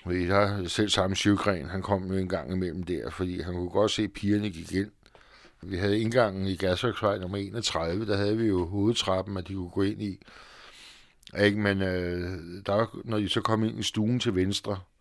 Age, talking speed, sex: 60-79, 210 wpm, male